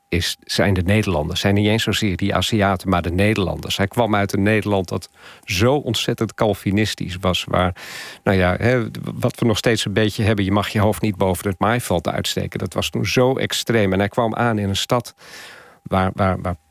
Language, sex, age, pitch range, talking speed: Dutch, male, 40-59, 95-115 Hz, 195 wpm